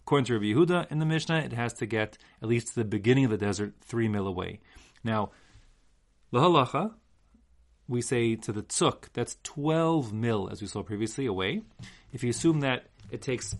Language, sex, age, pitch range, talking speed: English, male, 30-49, 105-145 Hz, 190 wpm